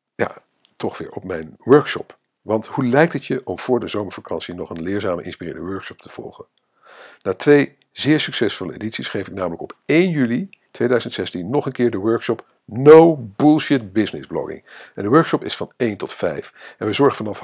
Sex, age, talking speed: male, 50-69, 185 wpm